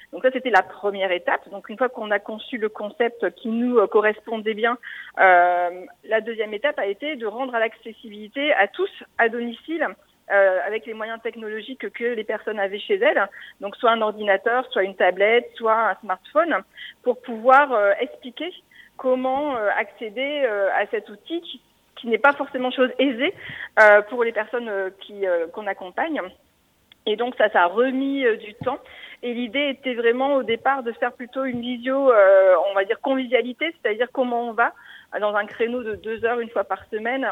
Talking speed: 190 wpm